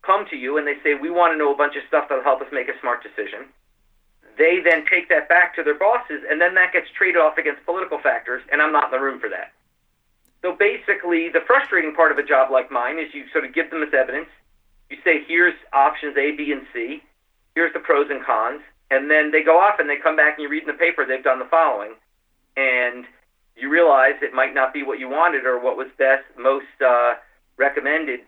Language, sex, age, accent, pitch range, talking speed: English, male, 50-69, American, 130-170 Hz, 240 wpm